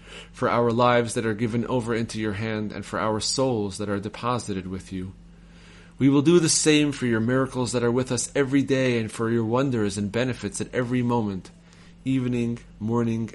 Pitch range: 95-120 Hz